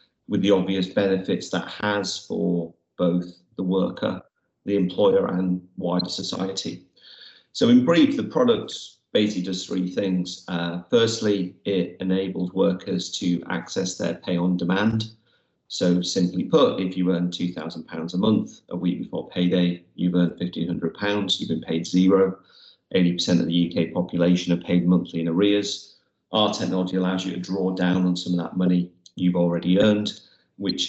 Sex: male